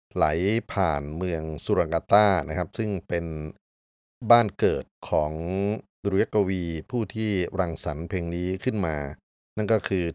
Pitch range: 80-100 Hz